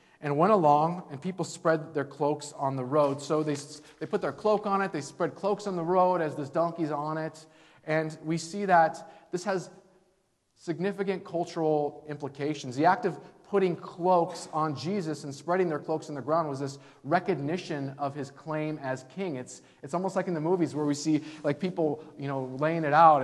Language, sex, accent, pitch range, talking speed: English, male, American, 135-175 Hz, 200 wpm